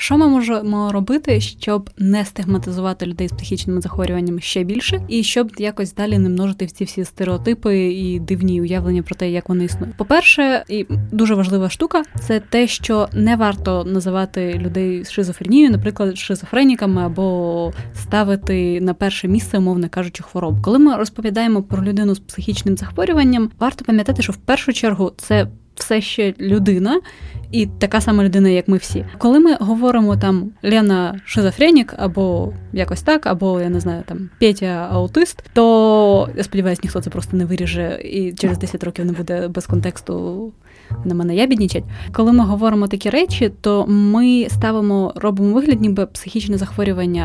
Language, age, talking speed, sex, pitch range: Ukrainian, 20-39, 165 wpm, female, 180-225 Hz